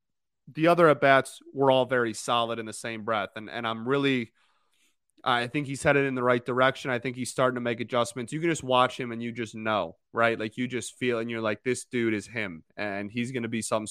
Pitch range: 120-150 Hz